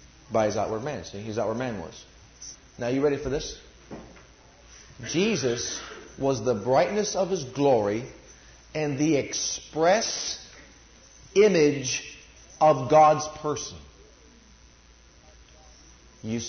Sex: male